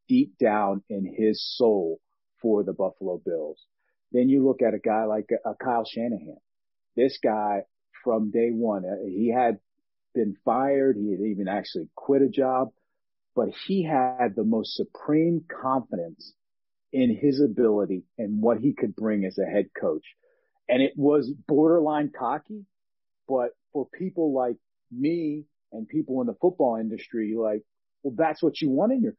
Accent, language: American, English